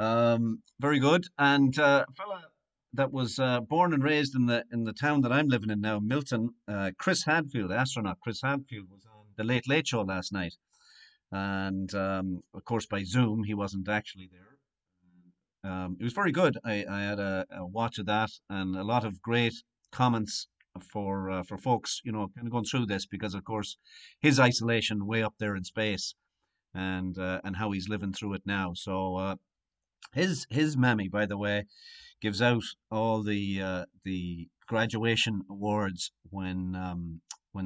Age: 50-69